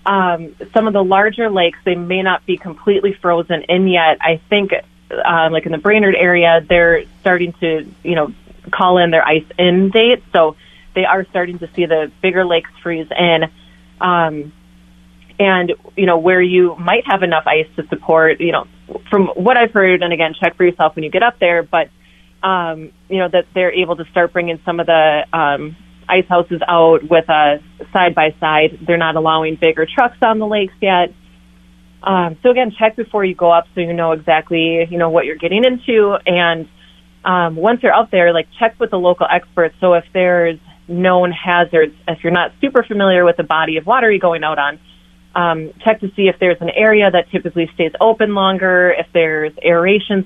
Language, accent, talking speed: English, American, 200 wpm